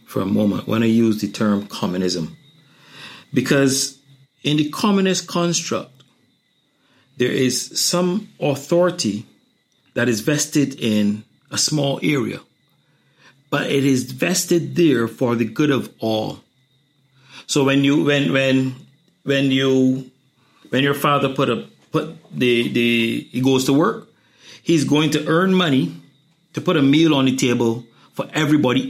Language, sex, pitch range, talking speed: English, male, 125-155 Hz, 140 wpm